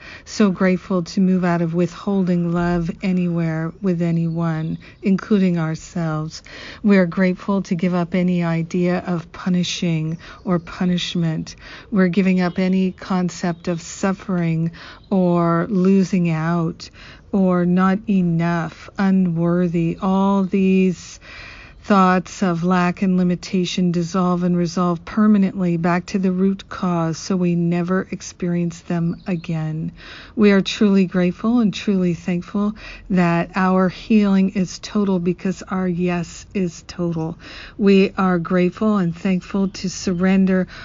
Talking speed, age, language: 125 wpm, 50-69, English